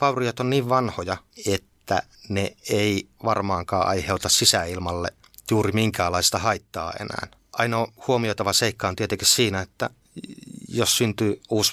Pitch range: 100-120 Hz